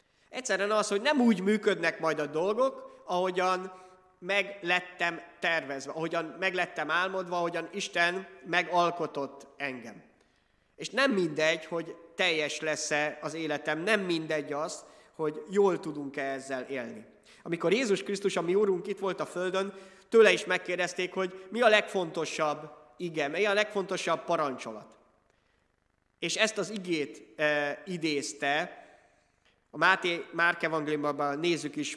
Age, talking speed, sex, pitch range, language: 30-49, 130 wpm, male, 150-185 Hz, Hungarian